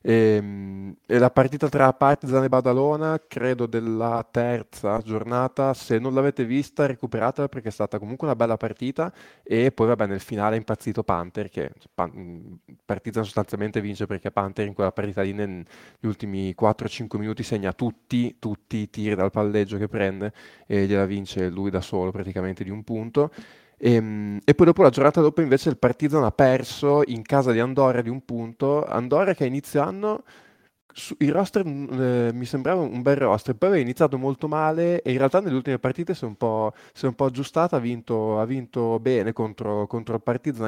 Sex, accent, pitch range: male, native, 105-135 Hz